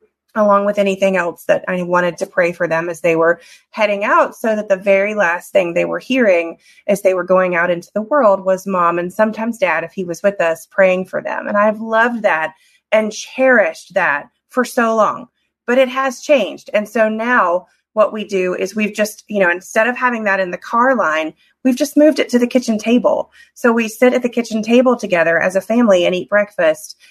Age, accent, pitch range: 30-49, American, 190-240 Hz